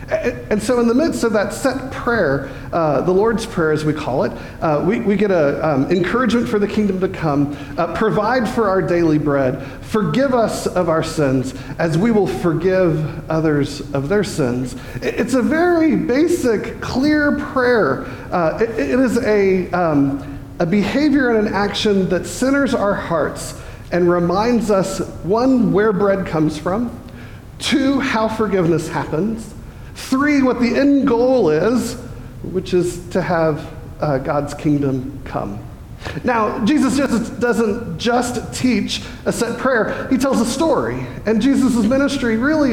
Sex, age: male, 40-59